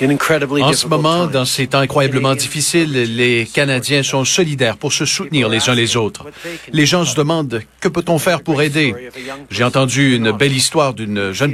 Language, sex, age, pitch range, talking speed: French, male, 40-59, 120-155 Hz, 190 wpm